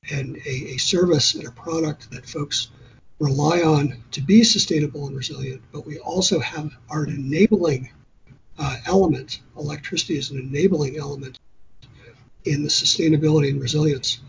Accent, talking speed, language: American, 145 wpm, English